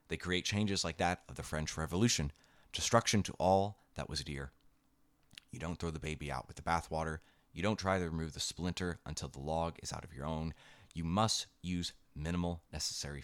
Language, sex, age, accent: English, male, 30-49, American